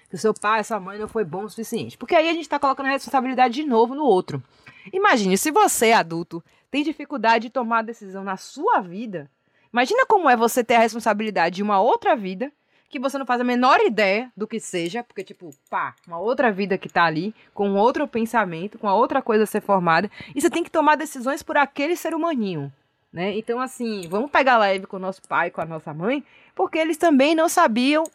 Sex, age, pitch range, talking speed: female, 20-39, 195-270 Hz, 220 wpm